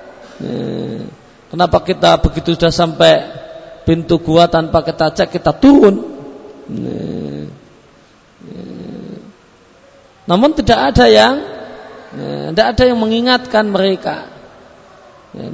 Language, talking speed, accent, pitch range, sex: Indonesian, 105 wpm, native, 160-205 Hz, male